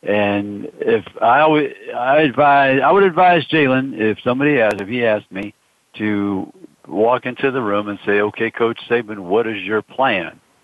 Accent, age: American, 60-79